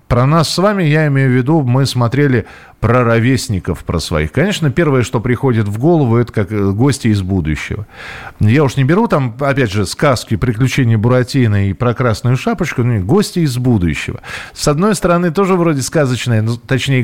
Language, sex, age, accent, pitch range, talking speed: Russian, male, 40-59, native, 115-155 Hz, 185 wpm